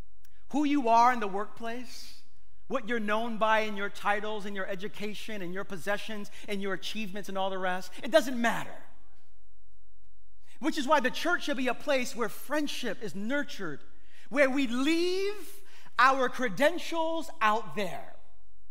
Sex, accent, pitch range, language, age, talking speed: male, American, 205-290 Hz, English, 30-49, 155 wpm